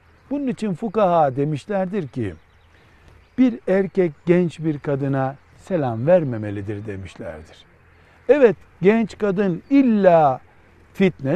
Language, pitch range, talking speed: Turkish, 115-180 Hz, 95 wpm